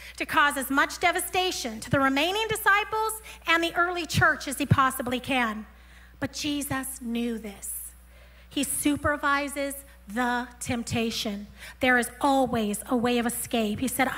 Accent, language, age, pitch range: American, English, 40-59, 245-345 Hz